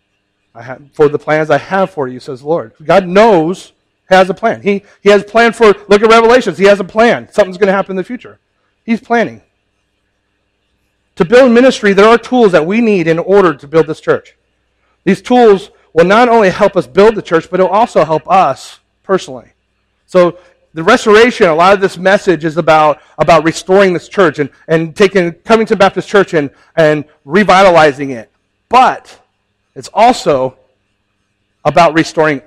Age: 40-59